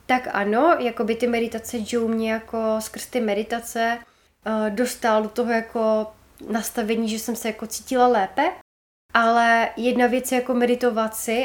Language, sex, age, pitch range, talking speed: Czech, female, 20-39, 225-240 Hz, 150 wpm